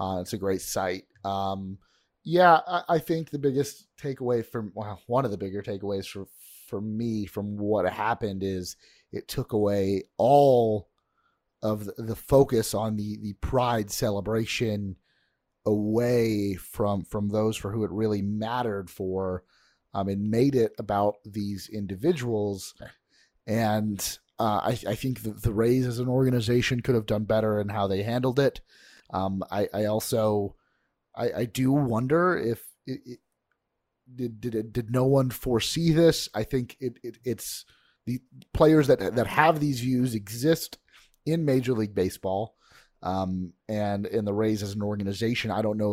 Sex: male